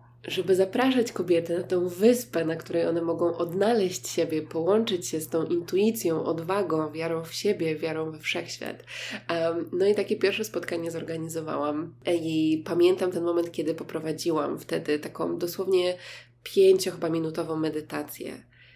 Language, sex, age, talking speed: Polish, female, 20-39, 135 wpm